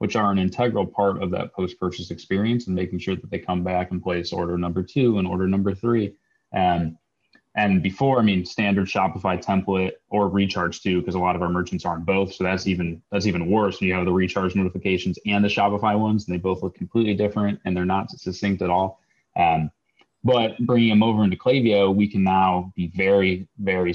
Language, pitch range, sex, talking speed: English, 90-100 Hz, male, 215 wpm